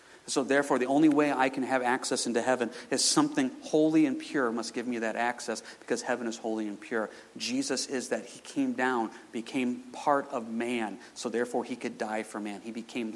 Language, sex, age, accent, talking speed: English, male, 40-59, American, 210 wpm